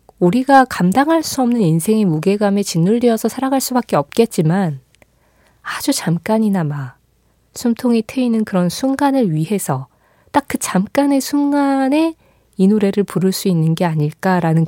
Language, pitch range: Korean, 160-220 Hz